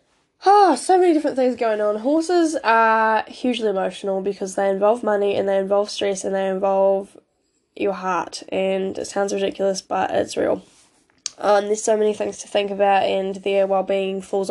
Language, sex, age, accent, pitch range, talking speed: English, female, 10-29, Australian, 190-215 Hz, 180 wpm